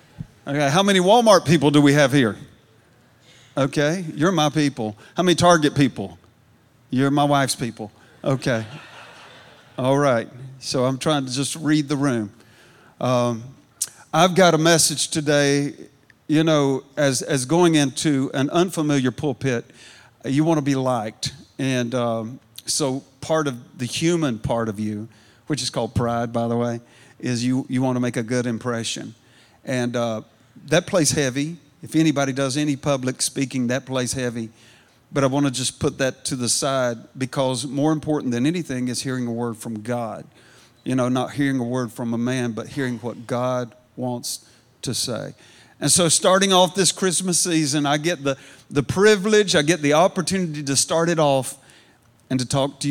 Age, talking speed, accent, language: 50-69, 175 wpm, American, English